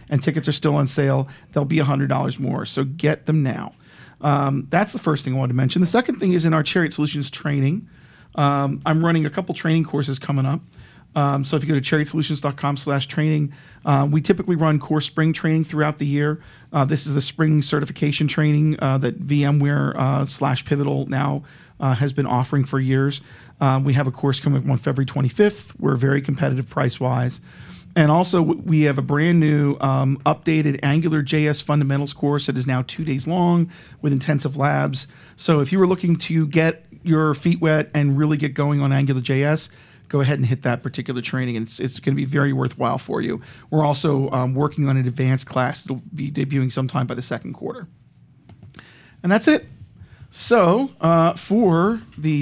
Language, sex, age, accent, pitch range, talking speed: English, male, 40-59, American, 135-155 Hz, 195 wpm